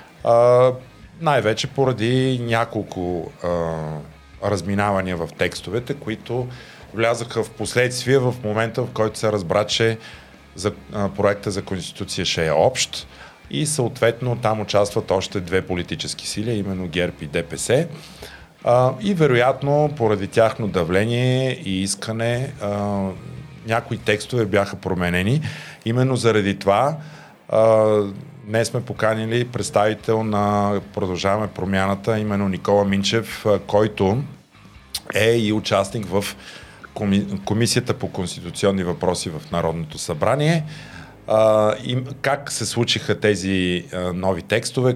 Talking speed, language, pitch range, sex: 115 wpm, Bulgarian, 95-120 Hz, male